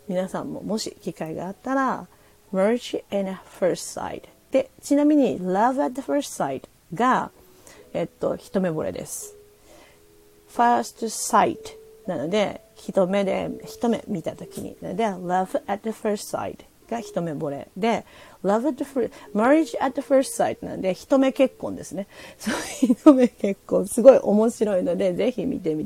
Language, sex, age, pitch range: Japanese, female, 40-59, 190-275 Hz